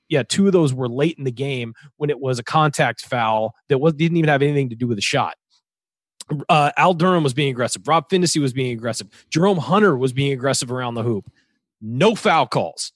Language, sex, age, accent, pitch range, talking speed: English, male, 30-49, American, 140-200 Hz, 220 wpm